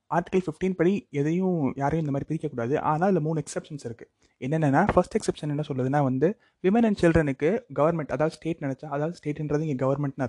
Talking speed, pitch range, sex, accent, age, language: 170 wpm, 130-165 Hz, male, native, 20-39, Tamil